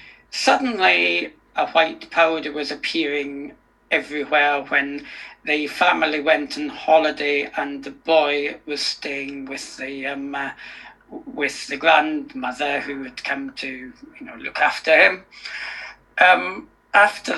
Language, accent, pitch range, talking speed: English, British, 140-175 Hz, 125 wpm